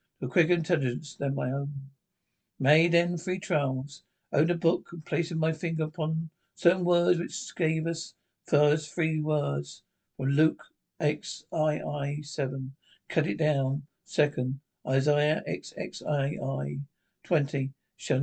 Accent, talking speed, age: British, 130 wpm, 60-79